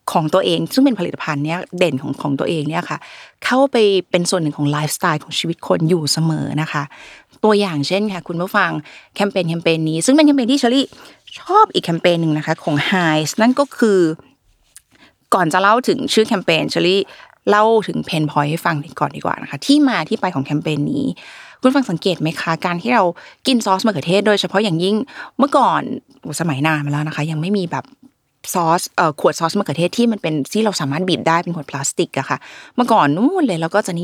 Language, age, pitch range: Thai, 20-39, 160-210 Hz